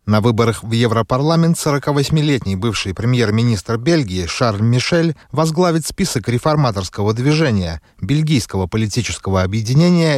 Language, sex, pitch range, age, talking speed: Russian, male, 110-175 Hz, 30-49, 100 wpm